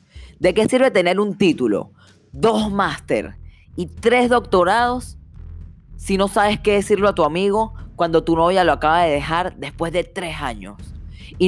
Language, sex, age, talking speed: Spanish, female, 10-29, 160 wpm